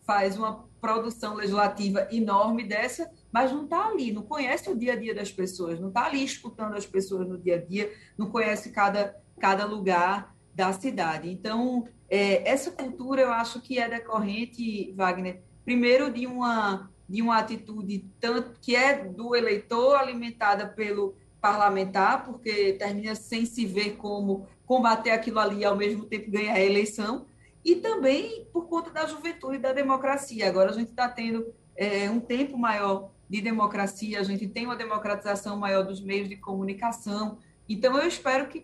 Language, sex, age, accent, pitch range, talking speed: Portuguese, female, 20-39, Brazilian, 205-255 Hz, 170 wpm